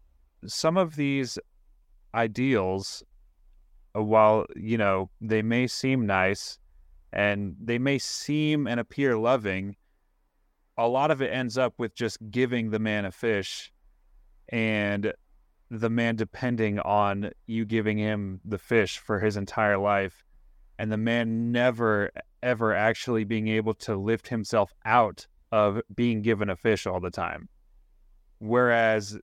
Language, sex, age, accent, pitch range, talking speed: English, male, 30-49, American, 100-115 Hz, 135 wpm